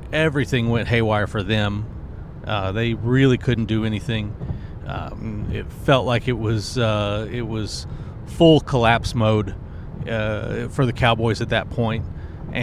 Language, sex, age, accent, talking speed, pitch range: English, male, 40-59, American, 145 wpm, 105-125 Hz